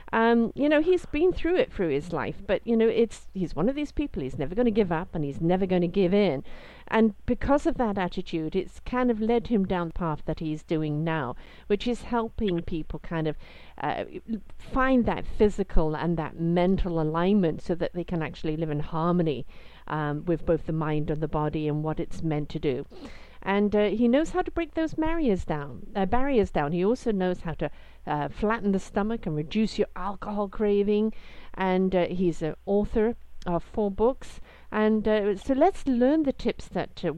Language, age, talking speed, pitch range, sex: English, 50-69, 210 wpm, 160-220 Hz, female